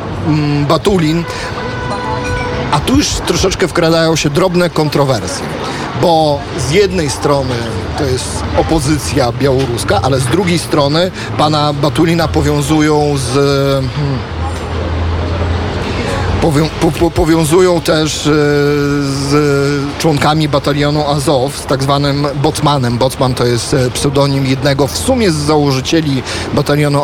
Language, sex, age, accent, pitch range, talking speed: Polish, male, 40-59, native, 130-160 Hz, 100 wpm